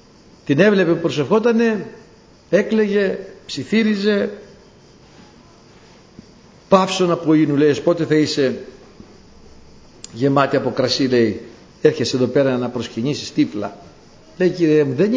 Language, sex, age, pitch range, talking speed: Greek, male, 60-79, 125-190 Hz, 105 wpm